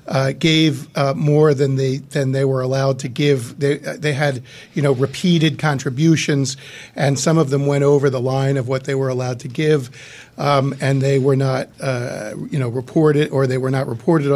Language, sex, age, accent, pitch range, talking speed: English, male, 40-59, American, 130-145 Hz, 200 wpm